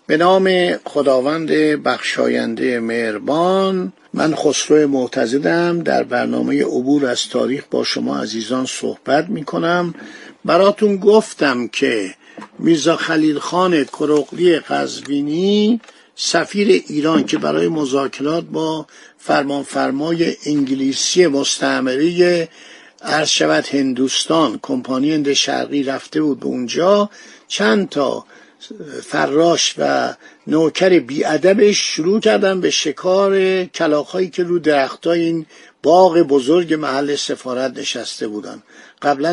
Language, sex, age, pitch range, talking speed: Persian, male, 50-69, 140-185 Hz, 95 wpm